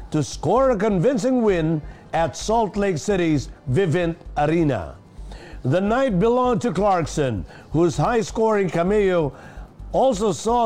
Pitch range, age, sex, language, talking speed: 155-210 Hz, 50-69, male, English, 120 wpm